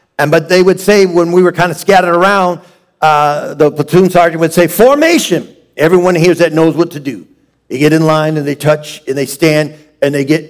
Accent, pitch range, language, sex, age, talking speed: American, 145-185 Hz, English, male, 50-69, 225 wpm